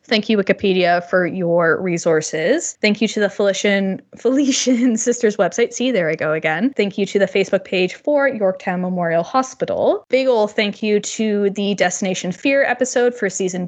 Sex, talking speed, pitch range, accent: female, 175 wpm, 185-235 Hz, American